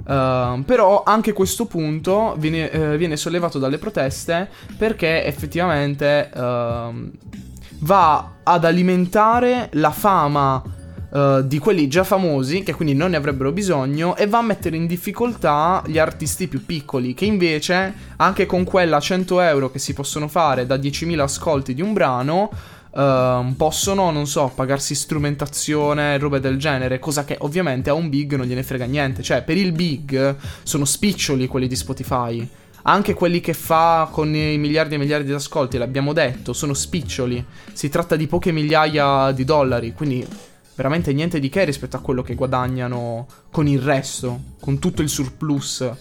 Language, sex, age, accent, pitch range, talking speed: Italian, male, 20-39, native, 130-165 Hz, 155 wpm